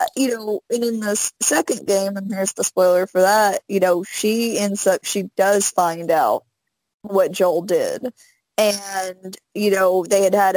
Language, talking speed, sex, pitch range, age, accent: English, 175 wpm, female, 185-210 Hz, 20-39, American